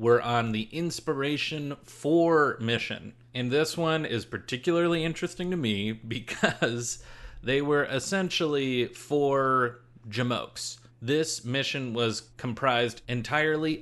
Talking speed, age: 110 wpm, 30-49